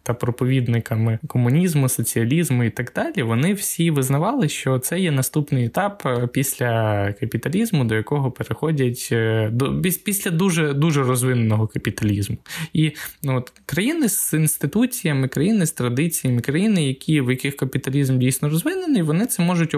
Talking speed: 130 wpm